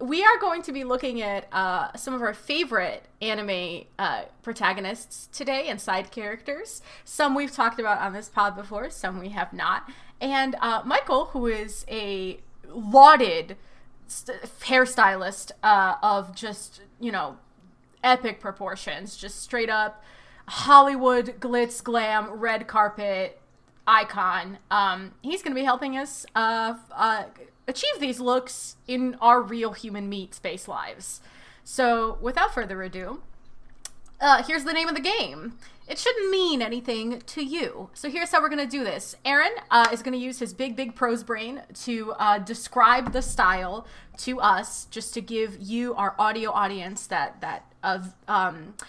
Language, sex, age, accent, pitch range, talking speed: English, female, 20-39, American, 205-260 Hz, 155 wpm